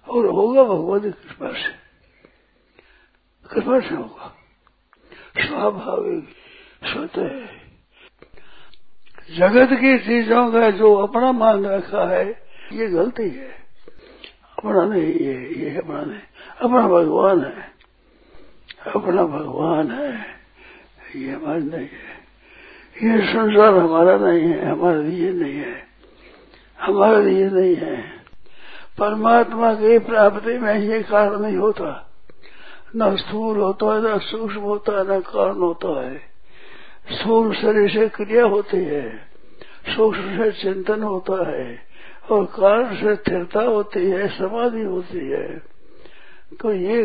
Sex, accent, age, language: male, native, 60-79, Hindi